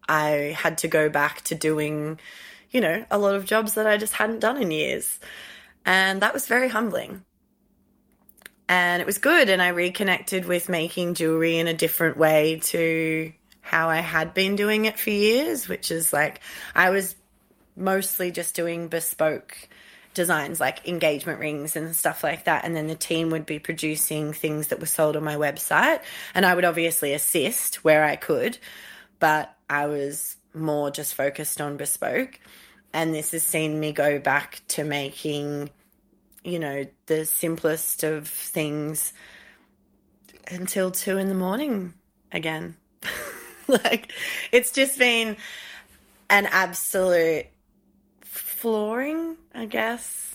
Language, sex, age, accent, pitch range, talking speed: English, female, 20-39, Australian, 155-190 Hz, 150 wpm